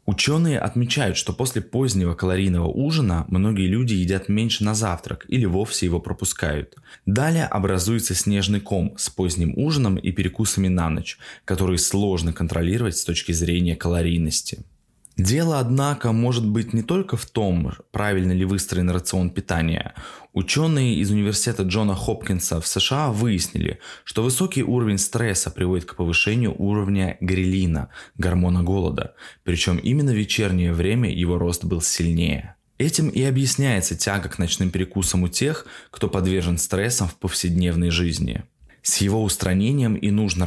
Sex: male